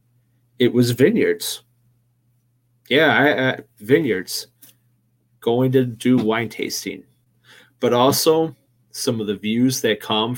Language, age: English, 30-49